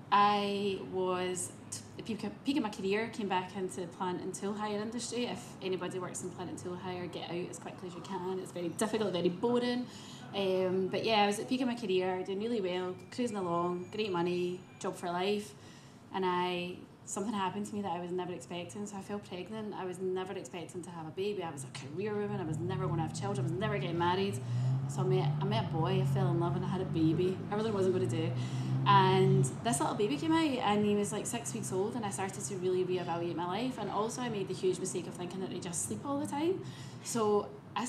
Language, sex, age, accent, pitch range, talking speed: English, female, 10-29, British, 170-205 Hz, 255 wpm